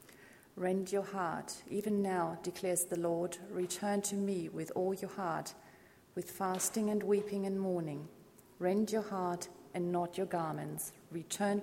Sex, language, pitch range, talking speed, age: female, English, 175-195 Hz, 150 wpm, 30-49